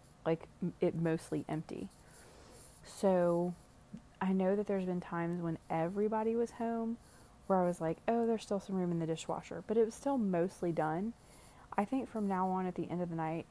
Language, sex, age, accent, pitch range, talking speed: English, female, 30-49, American, 155-185 Hz, 195 wpm